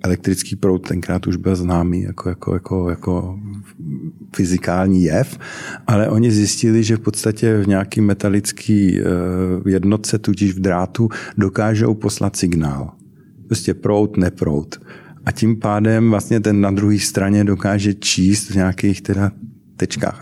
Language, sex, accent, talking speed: Czech, male, native, 135 wpm